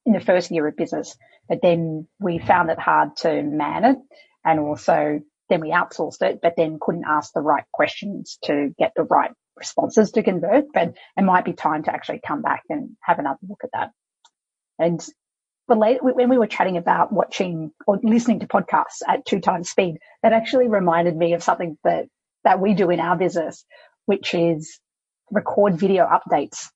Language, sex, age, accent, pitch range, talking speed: English, female, 30-49, Australian, 165-215 Hz, 185 wpm